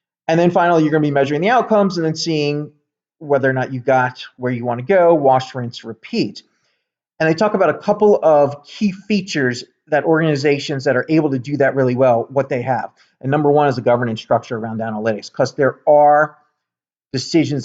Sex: male